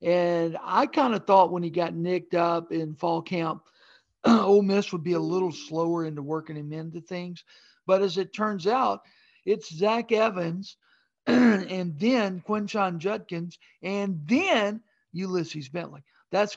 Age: 50-69